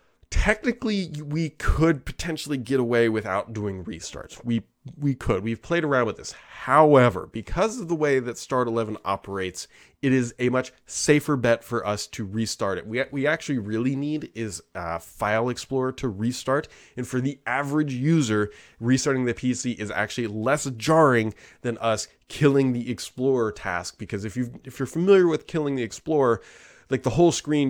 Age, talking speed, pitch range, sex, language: 20-39, 175 wpm, 105-135 Hz, male, English